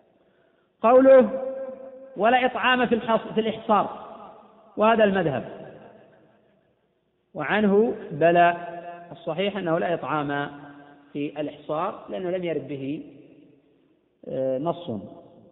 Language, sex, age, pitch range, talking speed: Arabic, male, 40-59, 185-230 Hz, 80 wpm